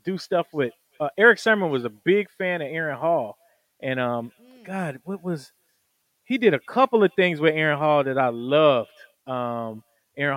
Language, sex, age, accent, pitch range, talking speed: English, male, 30-49, American, 130-160 Hz, 185 wpm